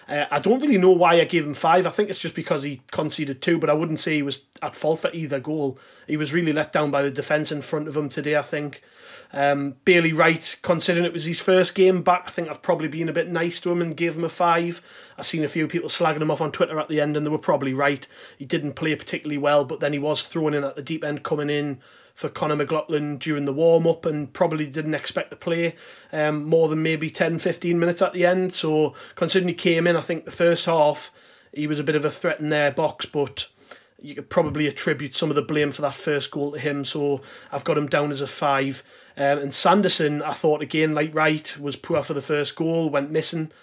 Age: 30-49